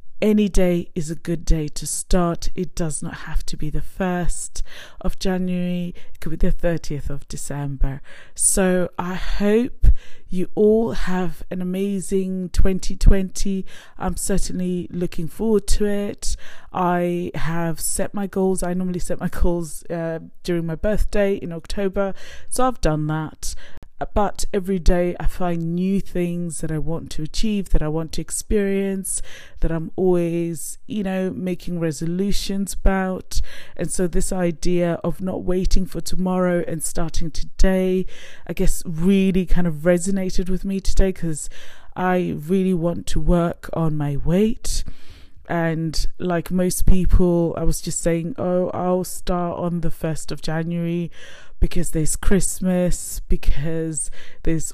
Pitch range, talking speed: 165-185 Hz, 150 wpm